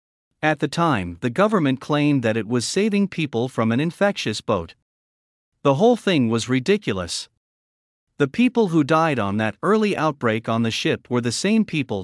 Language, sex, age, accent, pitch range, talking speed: English, male, 50-69, American, 110-170 Hz, 175 wpm